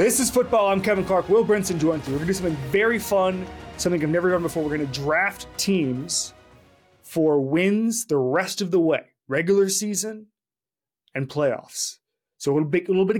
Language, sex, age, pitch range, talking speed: English, male, 20-39, 145-195 Hz, 205 wpm